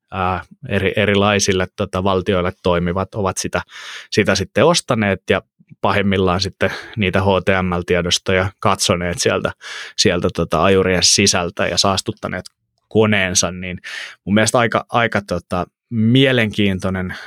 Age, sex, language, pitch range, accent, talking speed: 20-39, male, Finnish, 95-105 Hz, native, 110 wpm